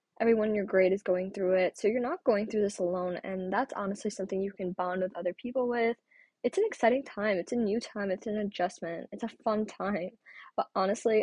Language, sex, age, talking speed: English, female, 10-29, 230 wpm